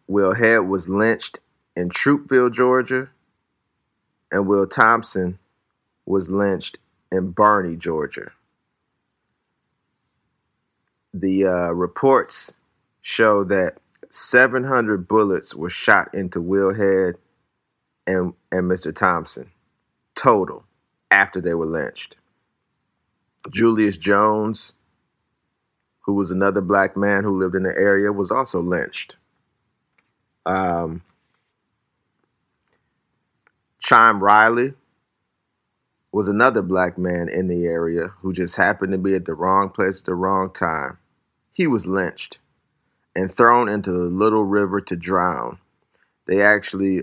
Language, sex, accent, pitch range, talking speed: English, male, American, 90-100 Hz, 110 wpm